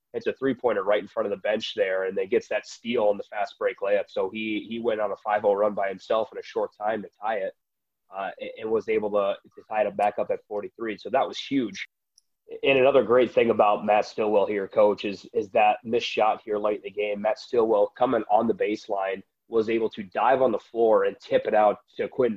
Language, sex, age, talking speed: English, male, 30-49, 245 wpm